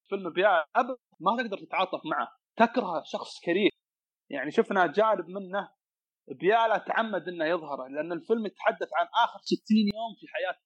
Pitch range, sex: 160-215 Hz, male